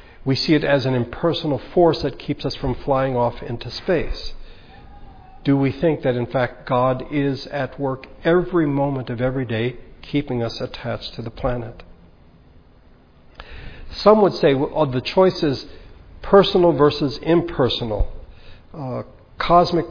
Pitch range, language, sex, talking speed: 110-145 Hz, English, male, 140 wpm